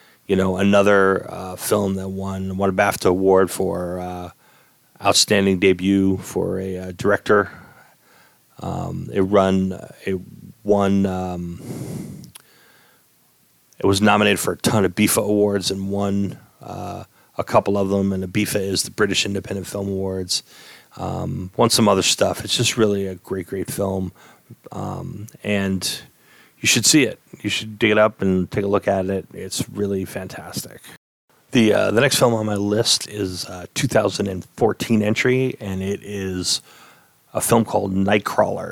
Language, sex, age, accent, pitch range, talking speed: English, male, 30-49, American, 95-105 Hz, 160 wpm